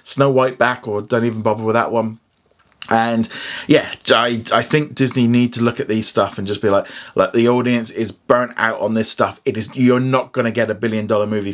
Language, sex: English, male